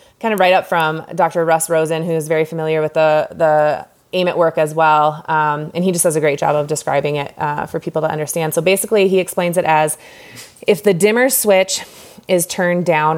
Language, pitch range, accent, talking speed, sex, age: English, 150-170 Hz, American, 220 wpm, female, 20-39